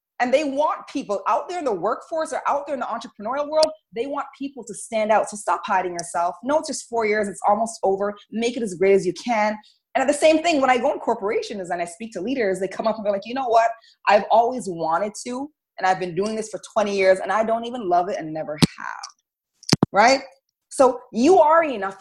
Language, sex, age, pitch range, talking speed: English, female, 30-49, 175-265 Hz, 250 wpm